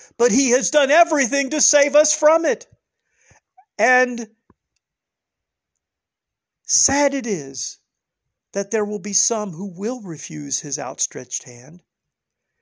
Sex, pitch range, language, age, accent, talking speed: male, 175-255 Hz, English, 50-69, American, 120 wpm